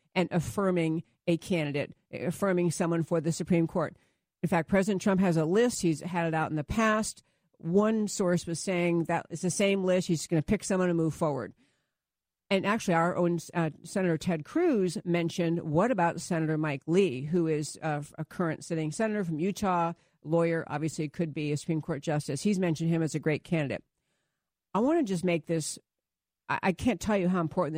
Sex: female